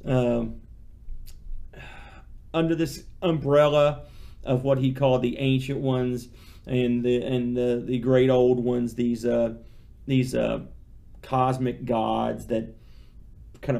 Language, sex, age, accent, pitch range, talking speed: English, male, 40-59, American, 115-145 Hz, 120 wpm